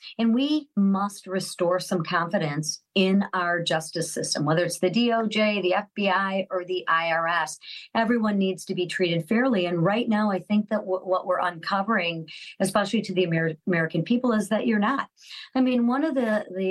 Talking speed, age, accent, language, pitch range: 175 wpm, 40-59, American, English, 180-235 Hz